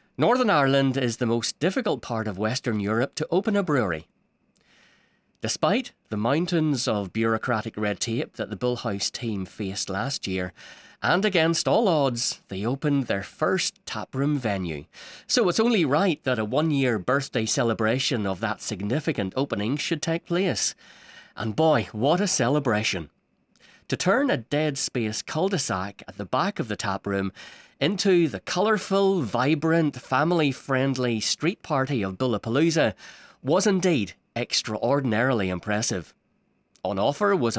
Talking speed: 140 wpm